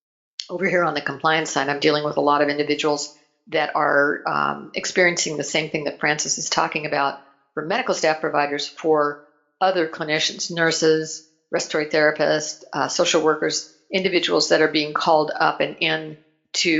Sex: female